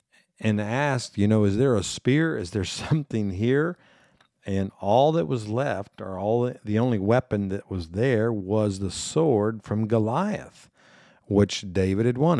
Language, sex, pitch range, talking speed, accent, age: English, male, 100-125 Hz, 170 wpm, American, 50-69